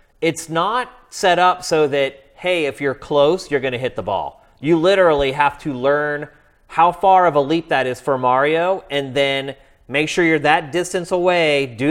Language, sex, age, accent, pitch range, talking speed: English, male, 30-49, American, 125-165 Hz, 190 wpm